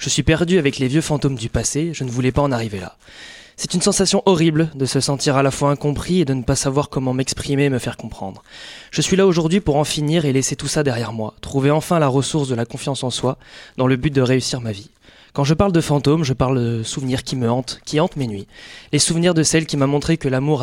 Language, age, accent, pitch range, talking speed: French, 20-39, French, 125-150 Hz, 270 wpm